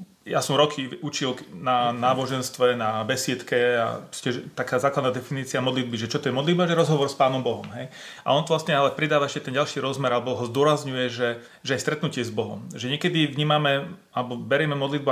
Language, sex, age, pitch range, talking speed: Slovak, male, 30-49, 125-150 Hz, 195 wpm